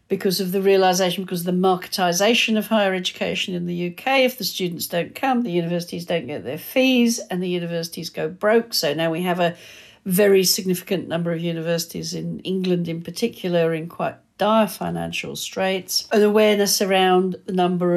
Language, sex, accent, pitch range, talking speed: English, female, British, 175-215 Hz, 180 wpm